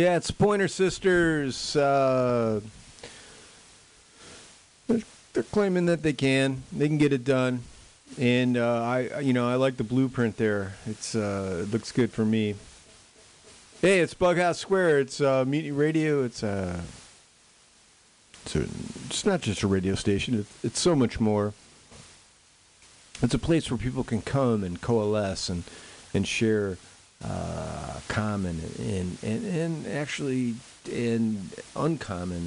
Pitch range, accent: 100-130 Hz, American